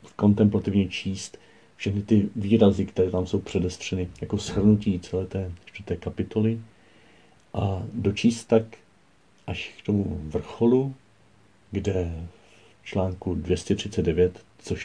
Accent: native